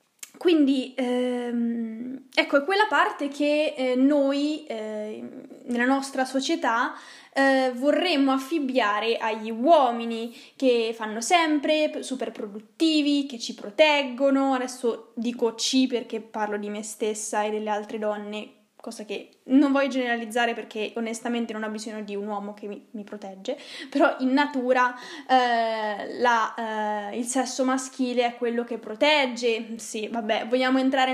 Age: 10-29